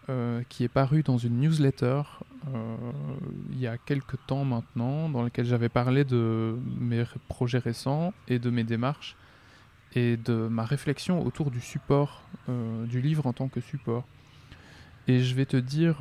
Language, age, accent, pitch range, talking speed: French, 20-39, French, 120-140 Hz, 170 wpm